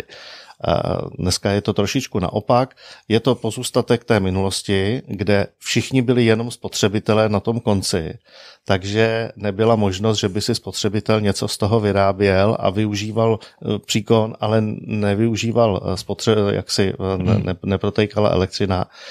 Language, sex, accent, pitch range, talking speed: Czech, male, native, 100-115 Hz, 125 wpm